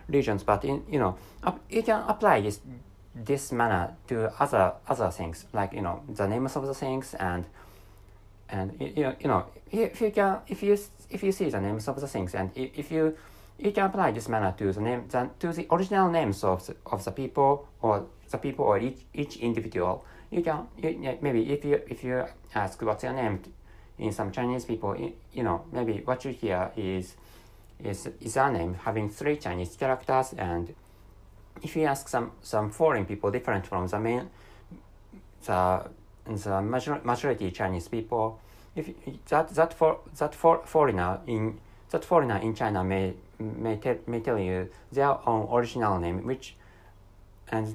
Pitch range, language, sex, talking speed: 100-145 Hz, English, male, 185 wpm